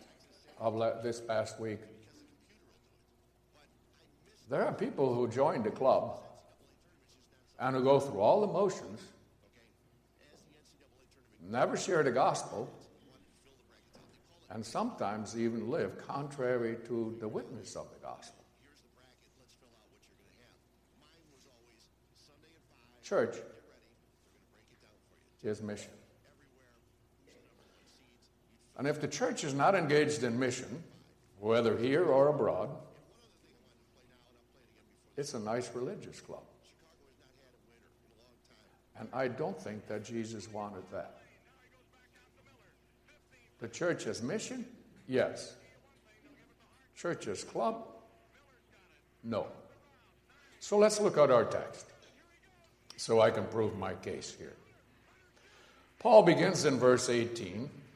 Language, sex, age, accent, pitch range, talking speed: English, male, 60-79, American, 115-135 Hz, 90 wpm